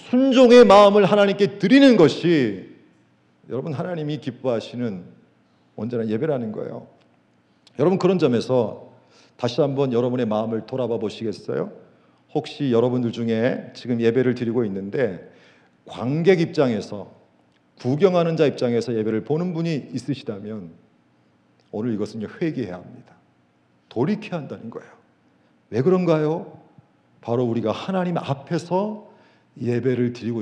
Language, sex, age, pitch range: Korean, male, 40-59, 115-180 Hz